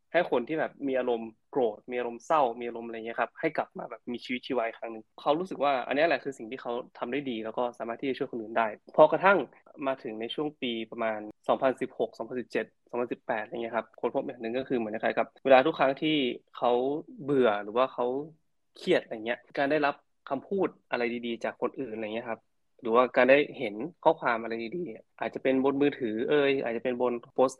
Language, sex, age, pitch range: Thai, male, 20-39, 115-140 Hz